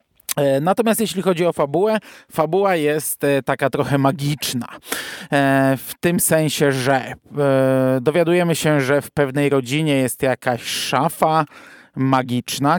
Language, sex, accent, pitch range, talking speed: Polish, male, native, 130-165 Hz, 115 wpm